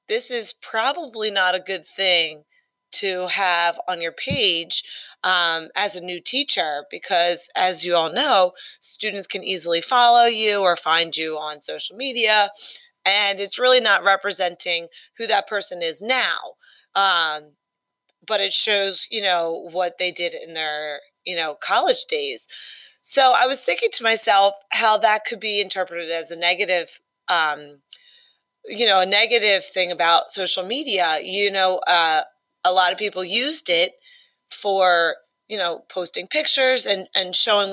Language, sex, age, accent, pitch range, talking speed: English, female, 30-49, American, 175-230 Hz, 155 wpm